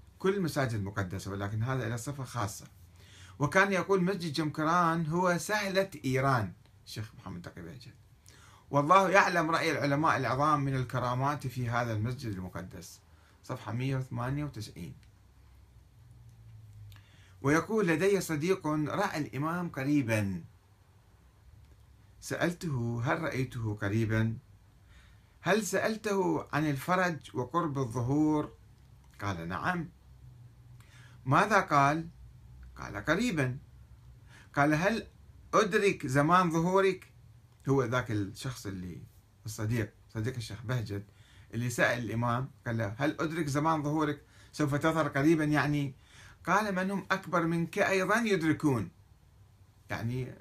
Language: Arabic